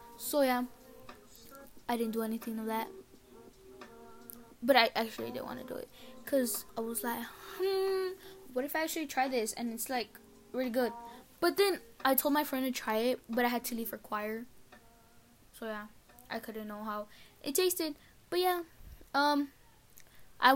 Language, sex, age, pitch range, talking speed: English, female, 10-29, 230-300 Hz, 175 wpm